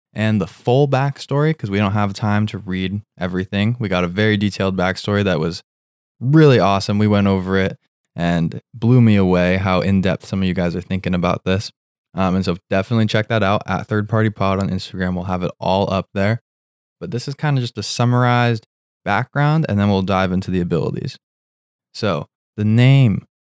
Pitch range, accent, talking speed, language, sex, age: 95-125 Hz, American, 195 wpm, English, male, 20-39